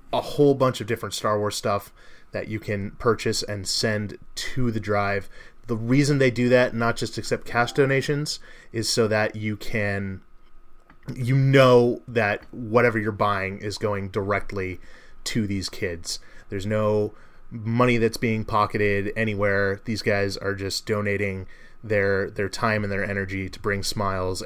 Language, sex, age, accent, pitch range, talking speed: English, male, 20-39, American, 100-120 Hz, 160 wpm